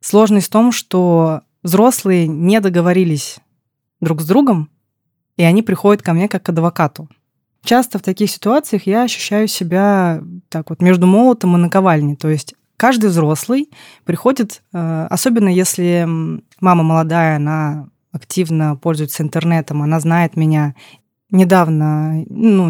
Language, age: Russian, 20-39